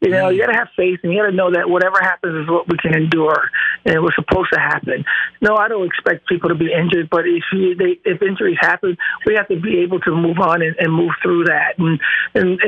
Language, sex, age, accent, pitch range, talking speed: English, male, 50-69, American, 175-200 Hz, 265 wpm